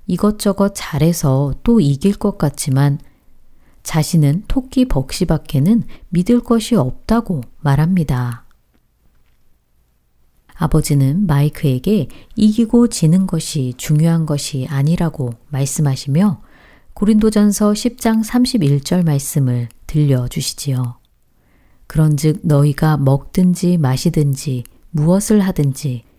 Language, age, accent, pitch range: Korean, 40-59, native, 135-195 Hz